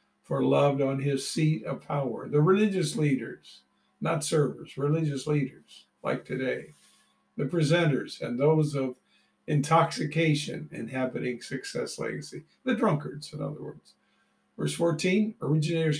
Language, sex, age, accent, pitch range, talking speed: English, male, 50-69, American, 115-160 Hz, 125 wpm